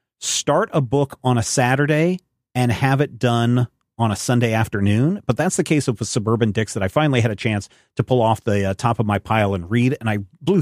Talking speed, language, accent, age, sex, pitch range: 235 wpm, English, American, 40-59, male, 110-135 Hz